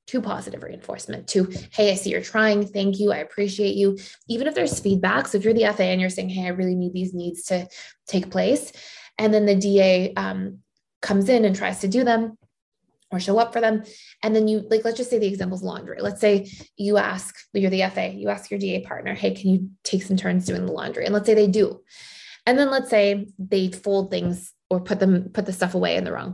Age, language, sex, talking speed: 20-39, English, female, 240 wpm